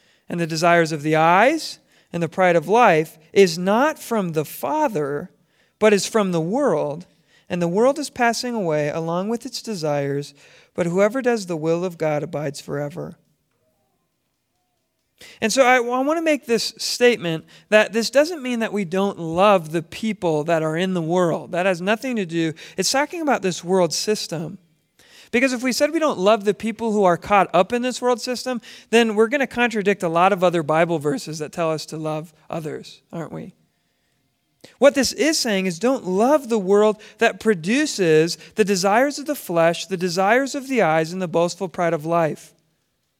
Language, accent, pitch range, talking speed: English, American, 170-240 Hz, 190 wpm